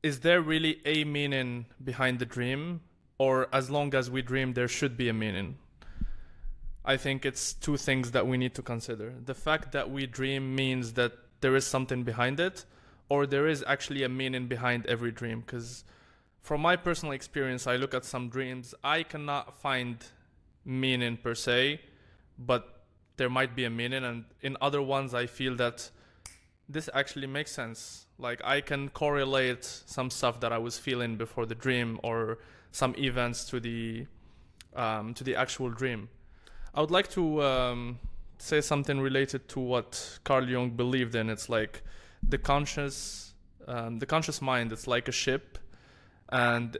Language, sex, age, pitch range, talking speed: English, male, 20-39, 120-140 Hz, 170 wpm